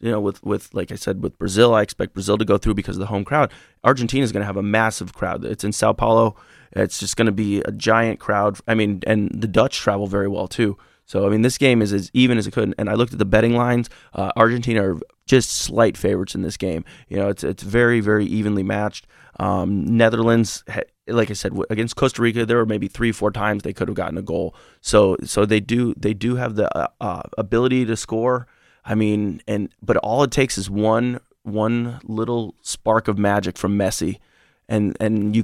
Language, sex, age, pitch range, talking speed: English, male, 20-39, 100-115 Hz, 230 wpm